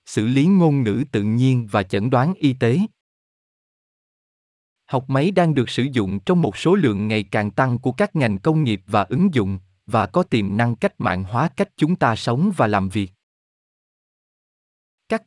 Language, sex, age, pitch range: Vietnamese, male, 20-39, 110-155 Hz